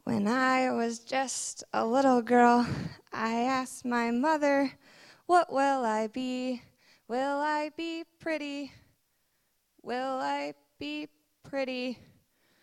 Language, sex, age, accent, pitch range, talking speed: English, female, 20-39, American, 230-315 Hz, 110 wpm